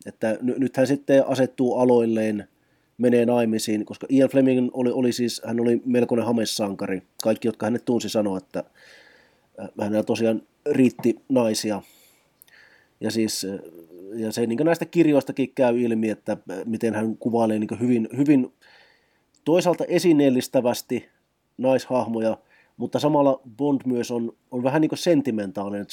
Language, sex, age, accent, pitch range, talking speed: Finnish, male, 30-49, native, 110-140 Hz, 135 wpm